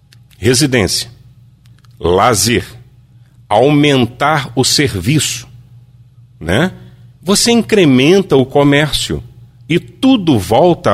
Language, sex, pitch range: Portuguese, male, 120-155 Hz